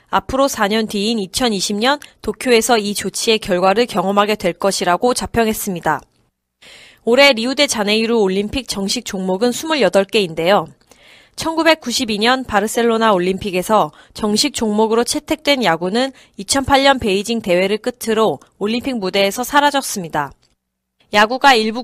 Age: 20-39